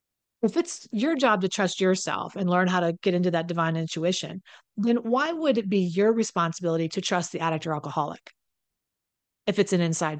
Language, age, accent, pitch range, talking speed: English, 40-59, American, 170-215 Hz, 195 wpm